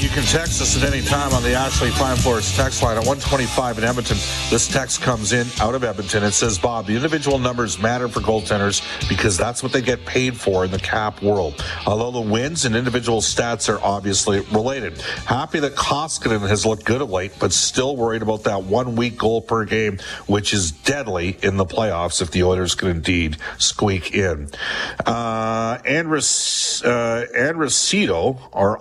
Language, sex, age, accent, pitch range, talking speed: English, male, 50-69, American, 95-120 Hz, 185 wpm